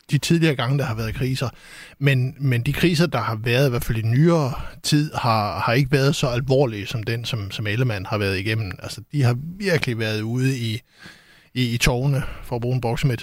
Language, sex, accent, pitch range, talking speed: Danish, male, native, 115-140 Hz, 215 wpm